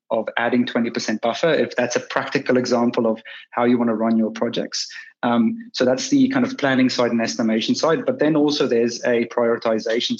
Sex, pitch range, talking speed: male, 115-155 Hz, 200 wpm